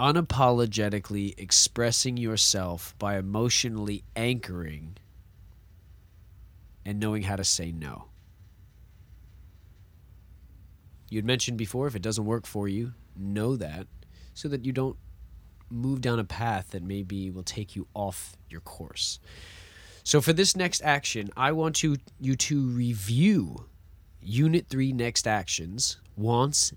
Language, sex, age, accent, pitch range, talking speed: English, male, 30-49, American, 90-125 Hz, 120 wpm